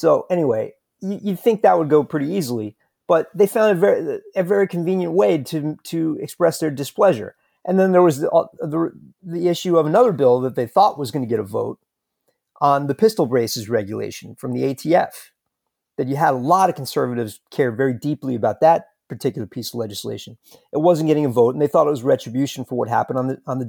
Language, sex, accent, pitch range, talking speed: English, male, American, 130-175 Hz, 220 wpm